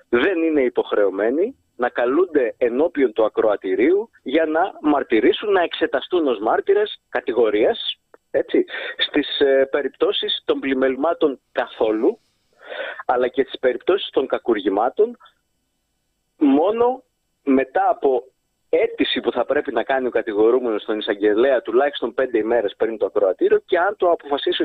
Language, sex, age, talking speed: Greek, male, 30-49, 125 wpm